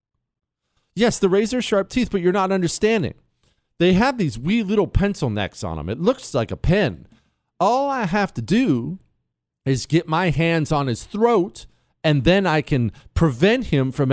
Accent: American